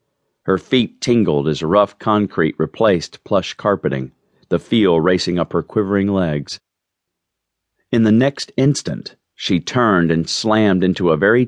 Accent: American